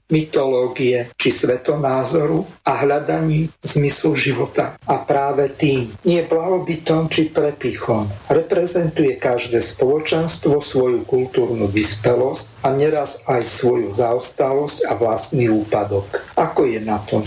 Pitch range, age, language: 120-160 Hz, 50-69, Slovak